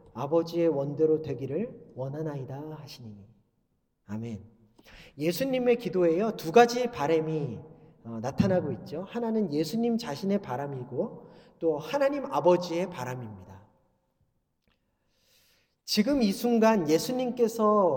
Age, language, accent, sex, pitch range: 40-59, Korean, native, male, 165-240 Hz